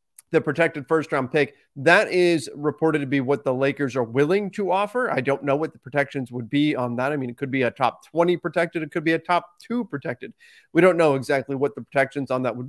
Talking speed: 250 wpm